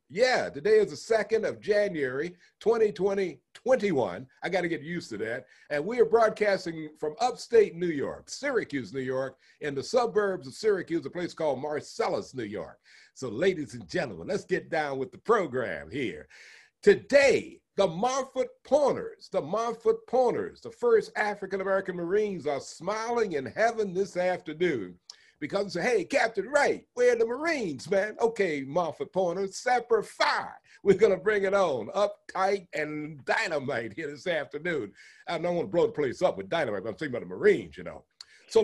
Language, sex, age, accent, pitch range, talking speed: English, male, 60-79, American, 185-285 Hz, 170 wpm